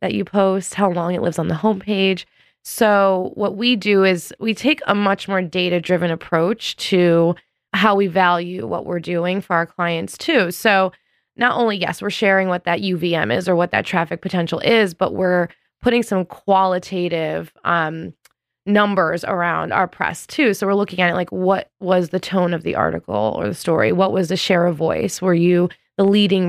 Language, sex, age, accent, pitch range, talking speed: English, female, 20-39, American, 170-195 Hz, 195 wpm